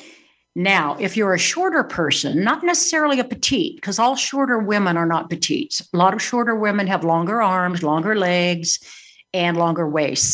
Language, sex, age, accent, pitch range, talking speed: English, female, 60-79, American, 170-240 Hz, 175 wpm